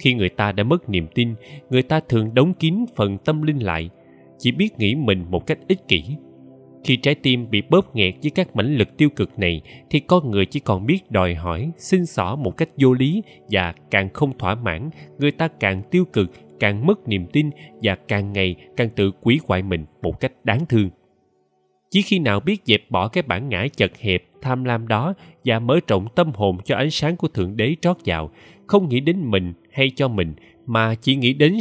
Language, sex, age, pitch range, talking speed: Vietnamese, male, 20-39, 95-150 Hz, 220 wpm